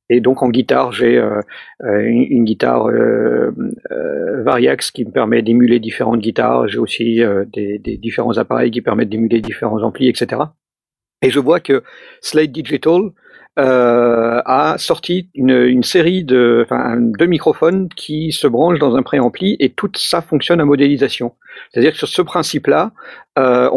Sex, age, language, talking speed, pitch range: male, 50-69, French, 160 wpm, 115-155 Hz